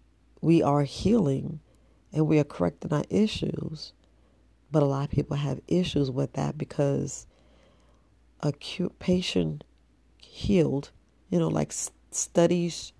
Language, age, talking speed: English, 40-59, 130 wpm